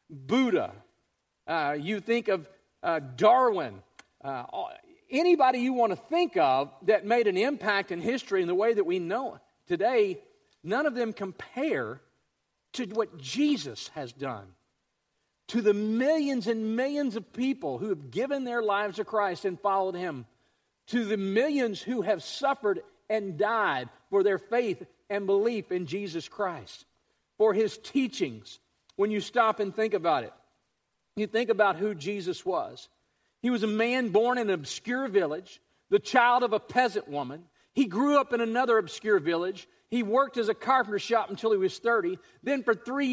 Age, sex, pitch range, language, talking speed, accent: 50-69, male, 205-255 Hz, English, 170 wpm, American